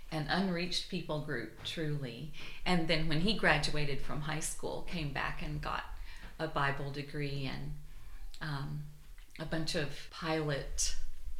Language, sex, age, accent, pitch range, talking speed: English, female, 40-59, American, 145-170 Hz, 135 wpm